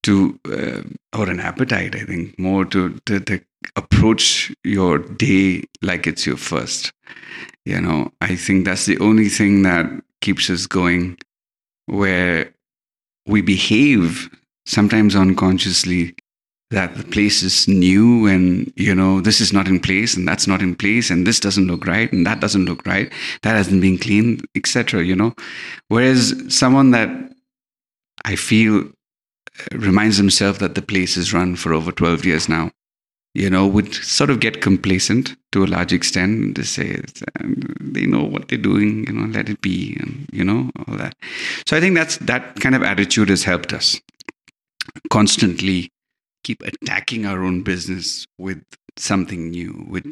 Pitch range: 90-105 Hz